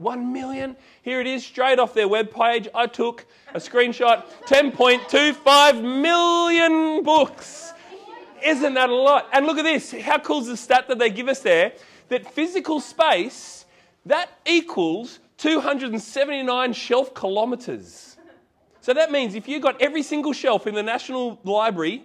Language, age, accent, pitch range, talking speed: English, 30-49, Australian, 195-265 Hz, 150 wpm